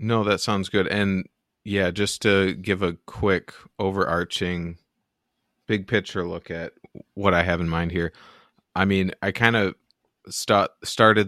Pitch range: 85-100 Hz